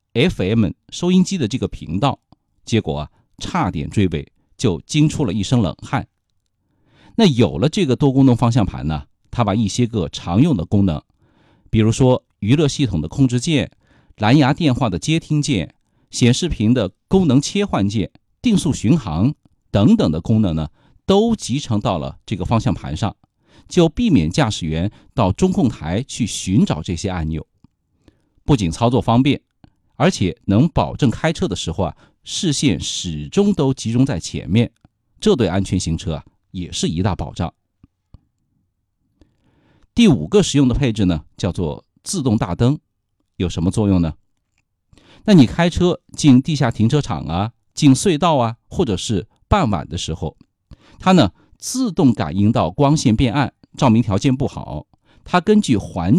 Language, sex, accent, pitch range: Chinese, male, native, 95-145 Hz